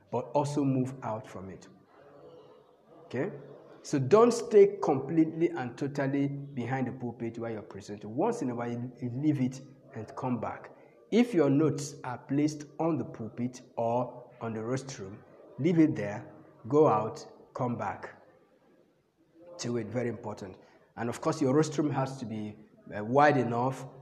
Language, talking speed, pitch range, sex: English, 155 wpm, 120-155 Hz, male